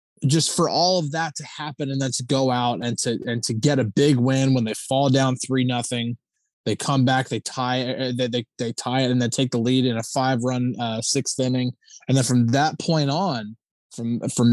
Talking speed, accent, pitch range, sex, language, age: 230 wpm, American, 125-145 Hz, male, English, 20-39